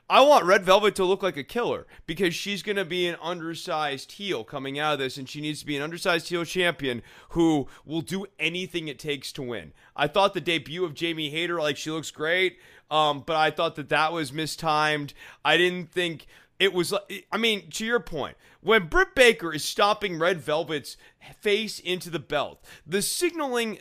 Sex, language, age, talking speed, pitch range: male, English, 30-49, 200 wpm, 150-210 Hz